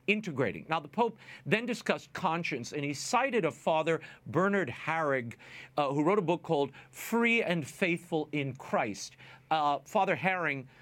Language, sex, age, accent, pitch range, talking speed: English, male, 50-69, American, 130-185 Hz, 155 wpm